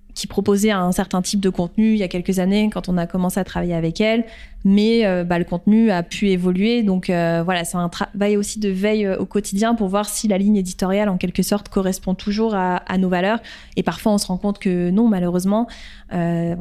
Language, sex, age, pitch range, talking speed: French, female, 20-39, 180-210 Hz, 230 wpm